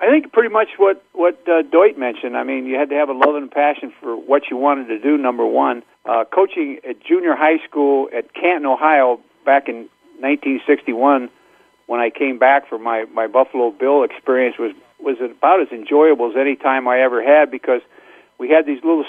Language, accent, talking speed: English, American, 205 wpm